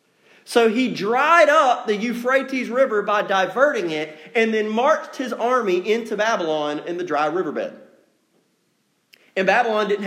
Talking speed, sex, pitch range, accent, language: 145 wpm, male, 200-270 Hz, American, English